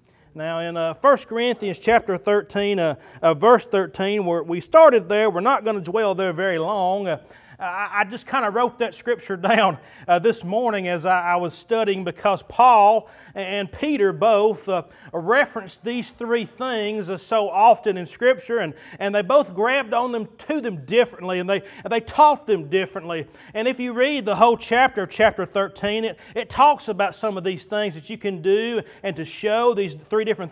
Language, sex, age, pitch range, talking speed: English, male, 30-49, 190-240 Hz, 190 wpm